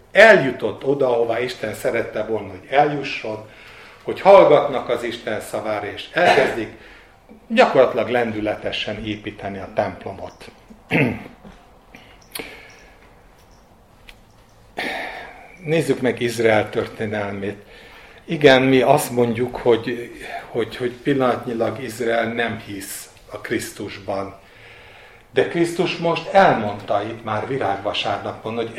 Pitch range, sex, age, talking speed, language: 110-135 Hz, male, 60-79, 95 wpm, Hungarian